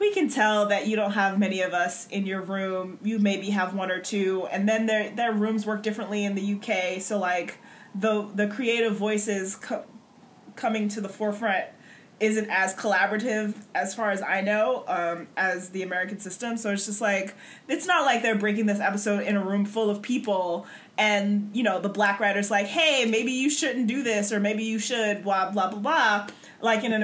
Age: 20-39